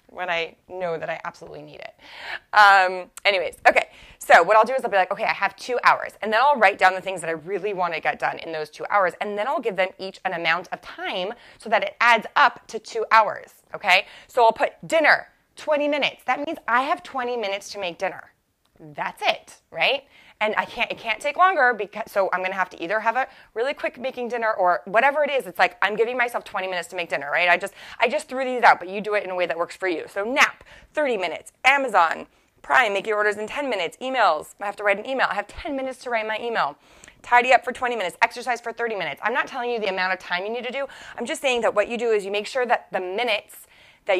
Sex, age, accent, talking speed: female, 20-39, American, 265 wpm